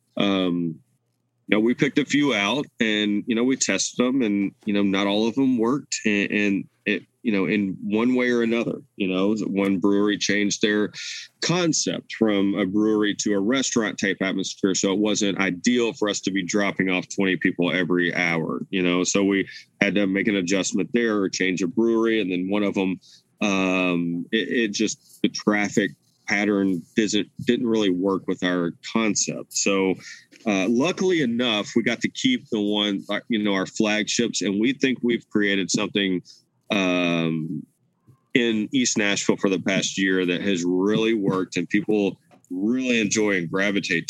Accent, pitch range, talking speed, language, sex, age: American, 95-110 Hz, 180 wpm, English, male, 30-49